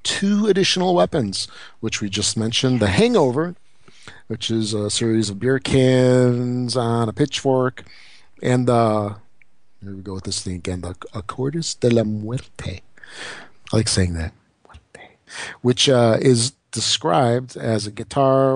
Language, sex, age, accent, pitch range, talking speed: English, male, 50-69, American, 105-125 Hz, 145 wpm